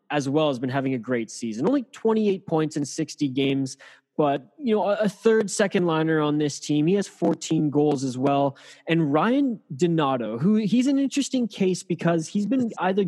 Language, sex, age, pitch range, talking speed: English, male, 20-39, 140-175 Hz, 195 wpm